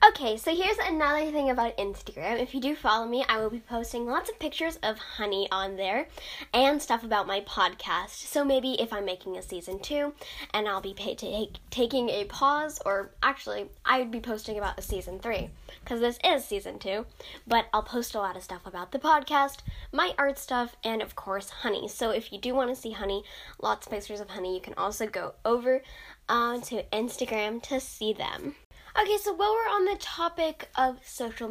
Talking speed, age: 200 wpm, 10-29